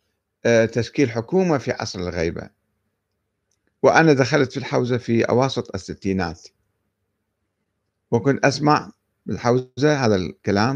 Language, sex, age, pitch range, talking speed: Arabic, male, 50-69, 105-145 Hz, 95 wpm